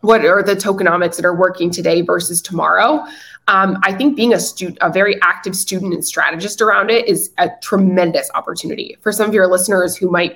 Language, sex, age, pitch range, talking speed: English, female, 20-39, 170-200 Hz, 195 wpm